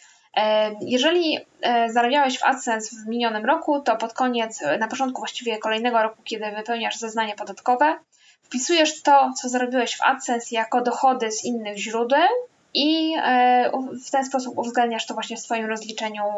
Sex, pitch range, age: female, 225-270 Hz, 10-29